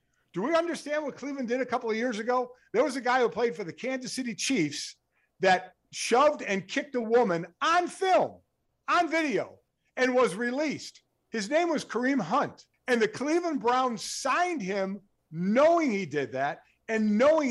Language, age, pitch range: English, 50-69, 195-275 Hz